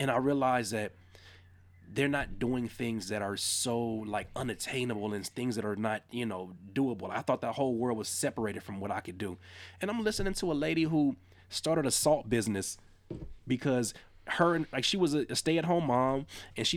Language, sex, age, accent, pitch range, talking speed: English, male, 20-39, American, 105-140 Hz, 200 wpm